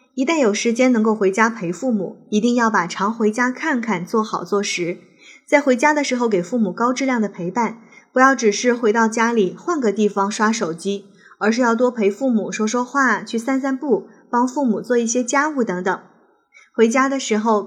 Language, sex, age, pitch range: Chinese, female, 20-39, 200-255 Hz